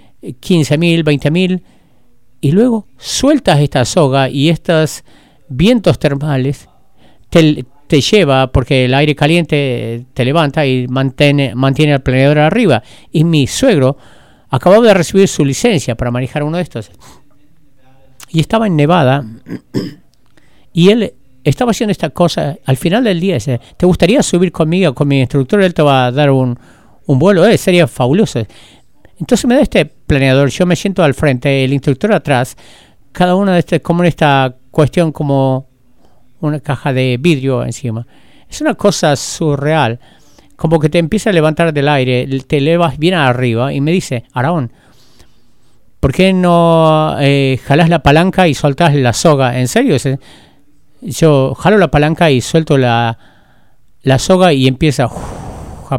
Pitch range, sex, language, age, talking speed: 130-170 Hz, male, English, 50-69, 155 wpm